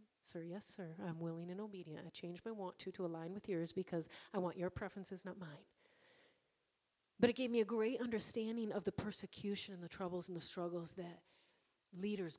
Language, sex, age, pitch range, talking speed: English, female, 40-59, 175-230 Hz, 200 wpm